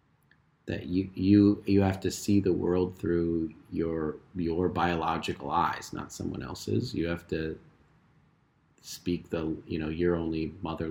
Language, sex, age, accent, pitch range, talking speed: English, male, 40-59, American, 85-105 Hz, 150 wpm